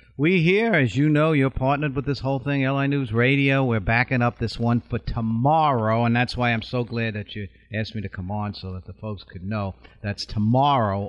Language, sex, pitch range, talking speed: English, male, 110-135 Hz, 225 wpm